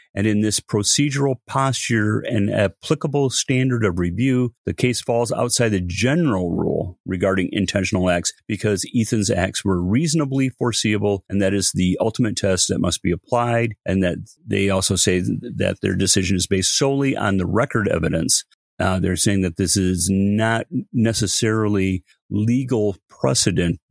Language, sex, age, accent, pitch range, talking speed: English, male, 40-59, American, 90-115 Hz, 155 wpm